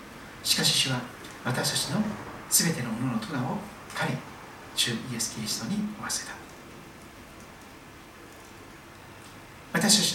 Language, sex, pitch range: Japanese, male, 125-190 Hz